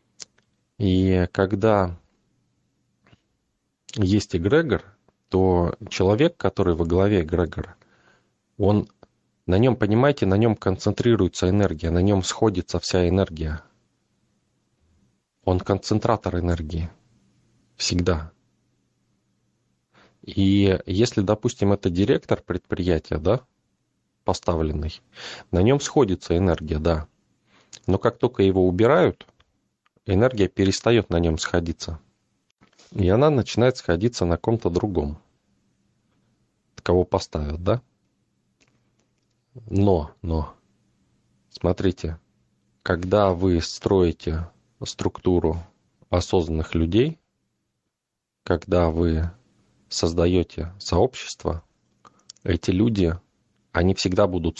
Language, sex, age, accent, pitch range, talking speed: Russian, male, 30-49, native, 85-105 Hz, 85 wpm